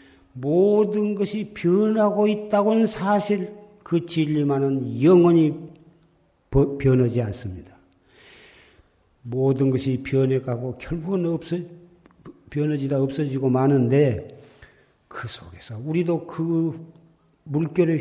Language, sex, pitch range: Korean, male, 120-175 Hz